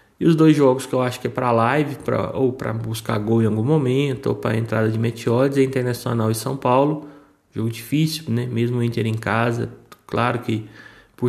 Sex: male